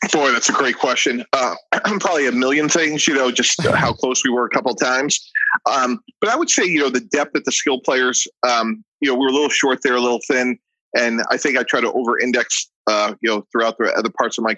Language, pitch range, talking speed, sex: English, 115-140 Hz, 255 wpm, male